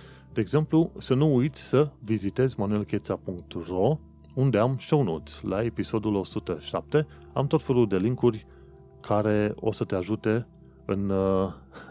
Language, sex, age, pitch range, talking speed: Romanian, male, 30-49, 85-115 Hz, 130 wpm